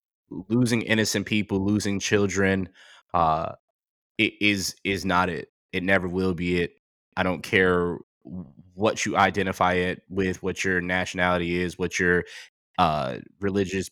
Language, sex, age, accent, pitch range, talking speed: Finnish, male, 20-39, American, 90-100 Hz, 140 wpm